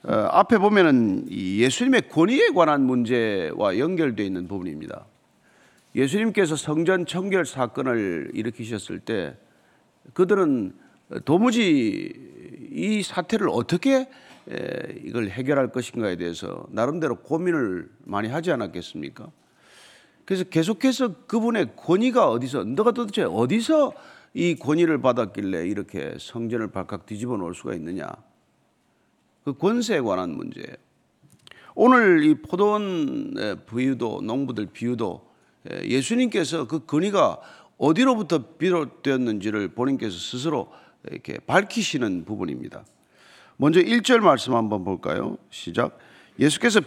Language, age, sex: Korean, 40-59, male